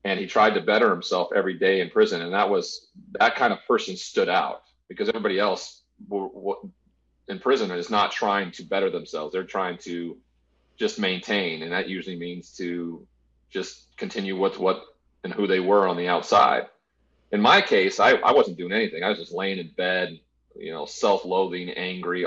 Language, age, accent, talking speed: English, 40-59, American, 185 wpm